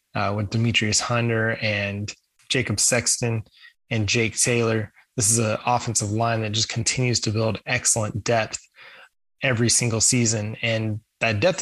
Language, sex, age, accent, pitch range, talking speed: English, male, 20-39, American, 110-120 Hz, 145 wpm